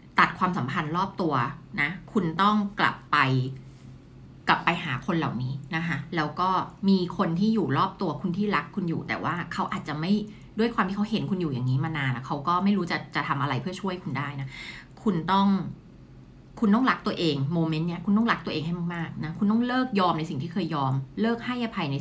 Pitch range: 145-200 Hz